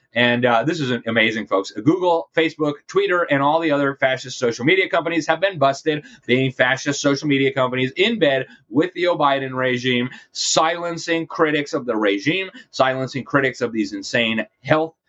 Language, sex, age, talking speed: English, male, 30-49, 170 wpm